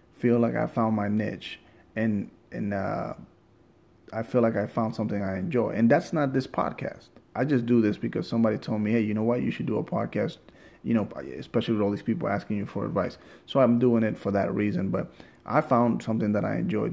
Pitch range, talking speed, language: 110-125 Hz, 225 wpm, English